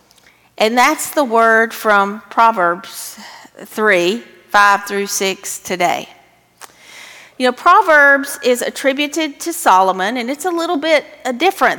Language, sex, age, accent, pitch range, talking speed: English, female, 40-59, American, 195-260 Hz, 120 wpm